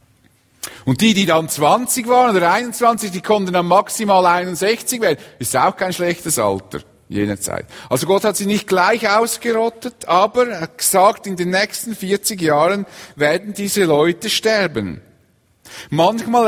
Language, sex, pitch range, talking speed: English, male, 125-205 Hz, 150 wpm